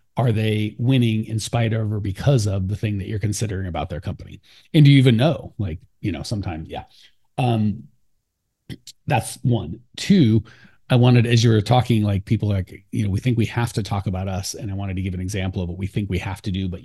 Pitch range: 100-125 Hz